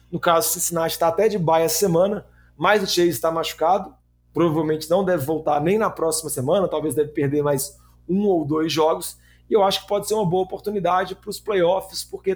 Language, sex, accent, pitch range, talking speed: Portuguese, male, Brazilian, 150-175 Hz, 210 wpm